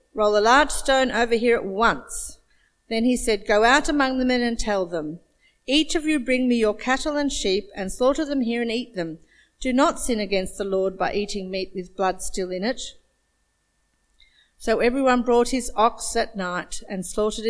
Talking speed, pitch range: 200 wpm, 205-265 Hz